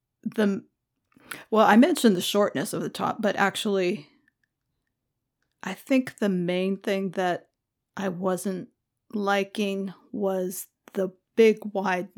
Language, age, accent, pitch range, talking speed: English, 30-49, American, 180-215 Hz, 120 wpm